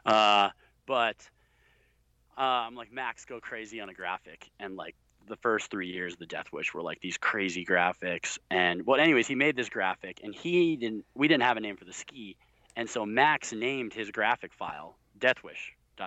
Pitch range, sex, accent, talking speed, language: 95-120 Hz, male, American, 200 wpm, English